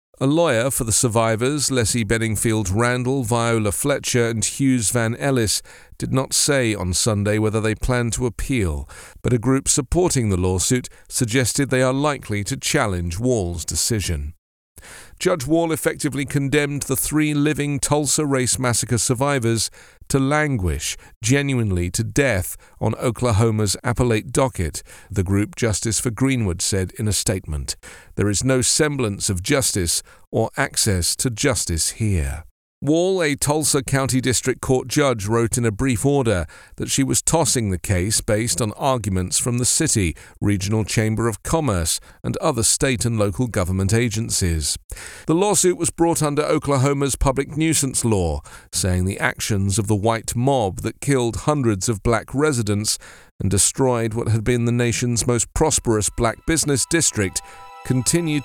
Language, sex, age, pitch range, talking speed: English, male, 40-59, 100-135 Hz, 150 wpm